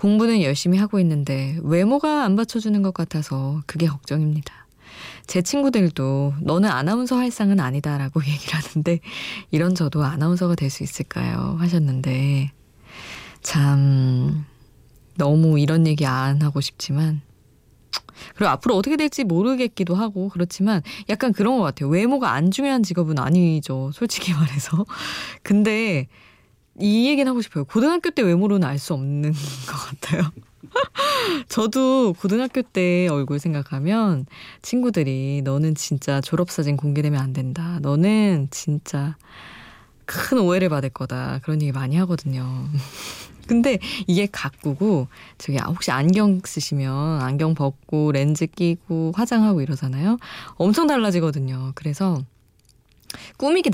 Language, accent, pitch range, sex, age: Korean, native, 140-200 Hz, female, 20-39